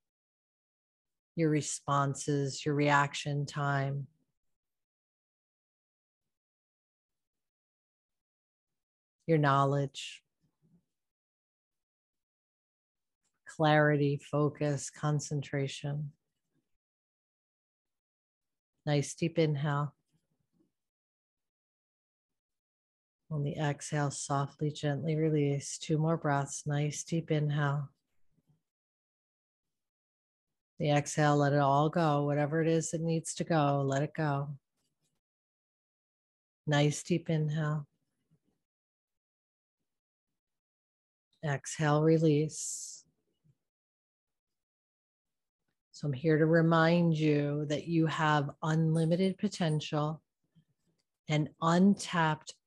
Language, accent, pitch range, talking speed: English, American, 130-155 Hz, 65 wpm